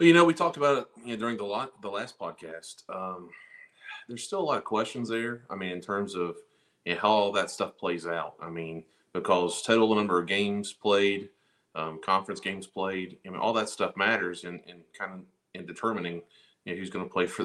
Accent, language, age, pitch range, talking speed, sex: American, English, 30-49, 85-100 Hz, 225 wpm, male